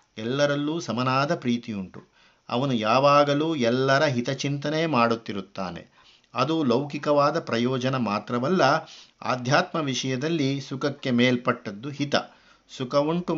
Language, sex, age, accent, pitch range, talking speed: Kannada, male, 50-69, native, 120-150 Hz, 80 wpm